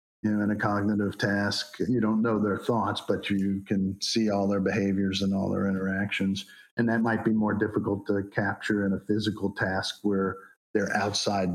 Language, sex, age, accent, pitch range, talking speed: English, male, 50-69, American, 100-115 Hz, 190 wpm